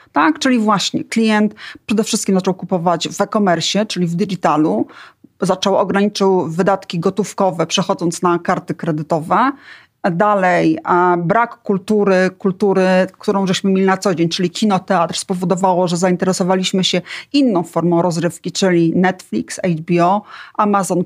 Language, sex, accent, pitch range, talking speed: Polish, female, native, 185-235 Hz, 125 wpm